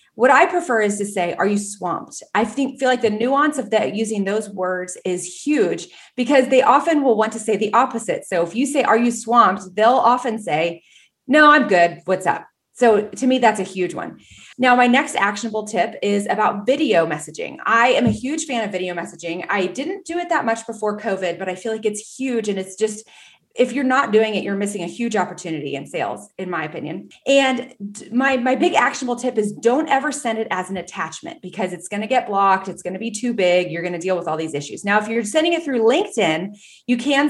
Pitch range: 185-250 Hz